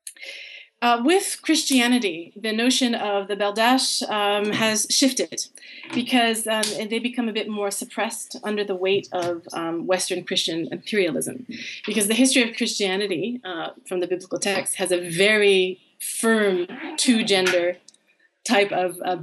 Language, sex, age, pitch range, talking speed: English, female, 30-49, 185-240 Hz, 140 wpm